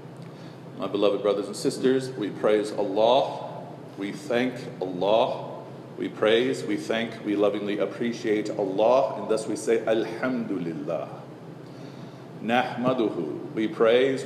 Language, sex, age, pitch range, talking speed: English, male, 40-59, 105-145 Hz, 115 wpm